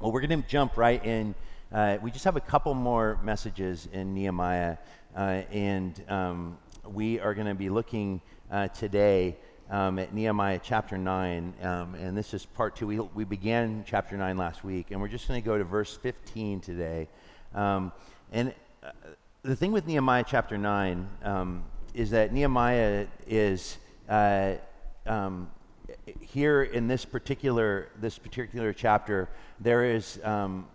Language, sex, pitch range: English, male, 100-125 Hz